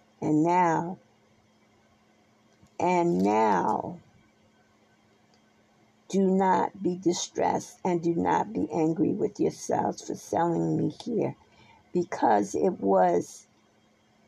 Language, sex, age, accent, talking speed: English, female, 50-69, American, 95 wpm